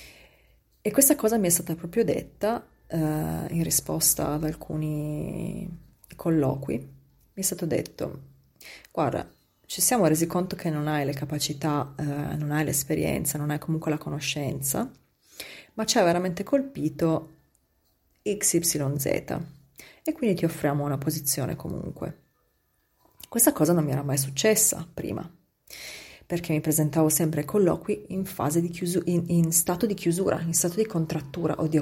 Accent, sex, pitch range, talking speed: Italian, female, 150-180 Hz, 140 wpm